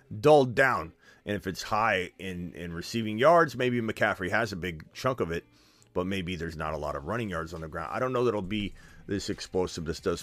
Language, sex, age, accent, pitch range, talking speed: English, male, 30-49, American, 95-125 Hz, 230 wpm